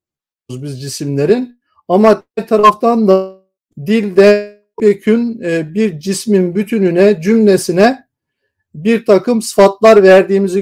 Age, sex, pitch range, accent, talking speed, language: 50-69, male, 180-220 Hz, native, 90 wpm, Turkish